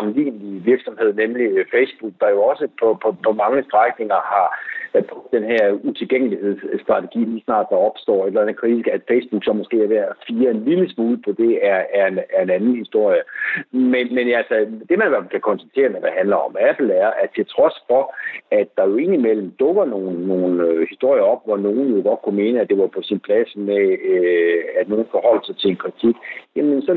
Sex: male